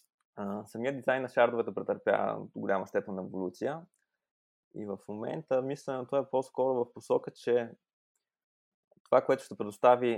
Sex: male